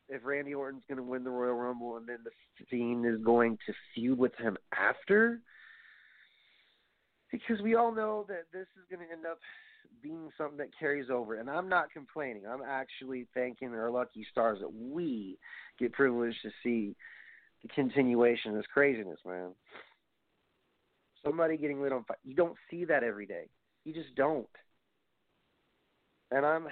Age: 40-59